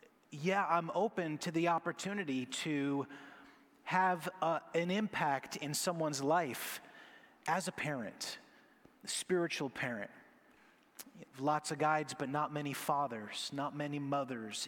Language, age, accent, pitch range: English, 30-49, American, 135-170 Hz